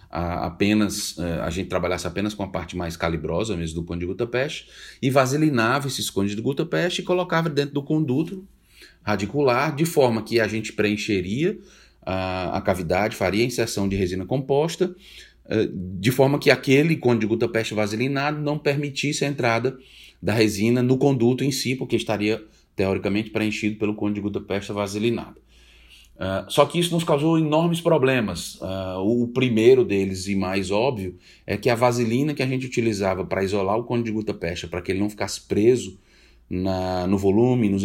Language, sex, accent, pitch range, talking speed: Portuguese, male, Brazilian, 95-130 Hz, 175 wpm